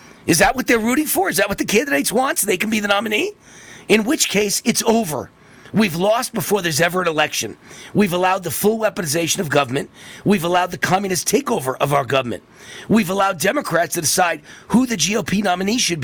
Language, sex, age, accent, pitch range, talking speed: English, male, 40-59, American, 165-215 Hz, 205 wpm